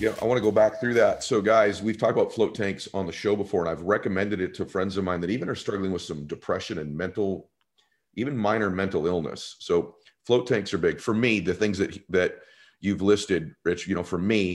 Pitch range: 95-110 Hz